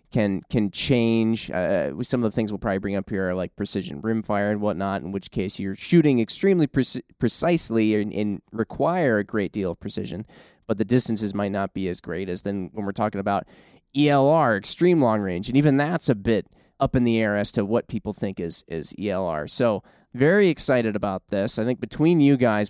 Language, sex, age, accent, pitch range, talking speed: English, male, 20-39, American, 100-135 Hz, 215 wpm